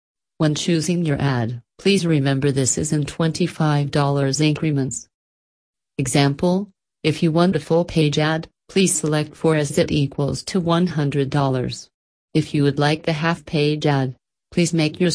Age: 40-59